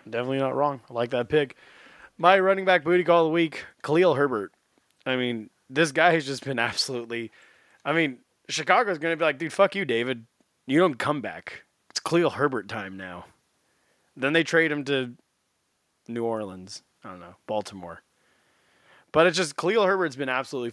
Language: English